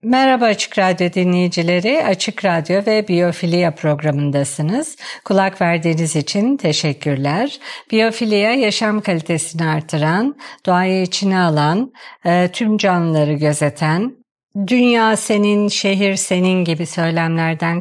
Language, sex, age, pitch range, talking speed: Turkish, female, 50-69, 170-220 Hz, 100 wpm